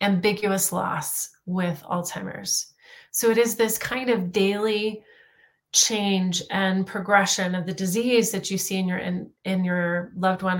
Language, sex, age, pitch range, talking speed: English, female, 30-49, 180-210 Hz, 155 wpm